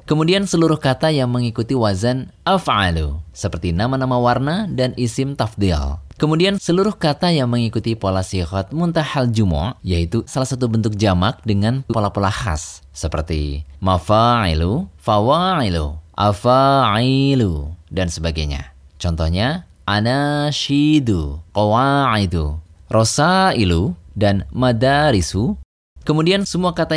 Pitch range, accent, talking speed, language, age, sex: 85-130 Hz, native, 100 wpm, Indonesian, 20-39, male